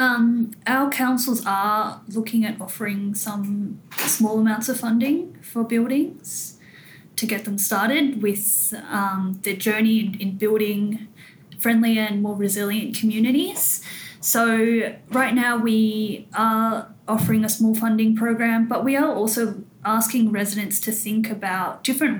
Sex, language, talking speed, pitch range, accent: female, English, 130 wpm, 200-225 Hz, Australian